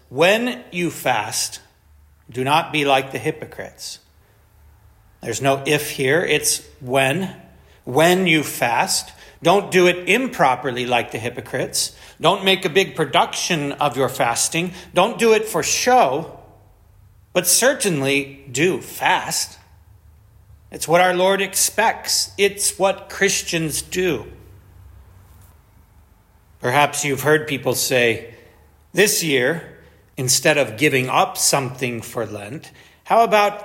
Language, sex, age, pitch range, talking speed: English, male, 40-59, 115-185 Hz, 120 wpm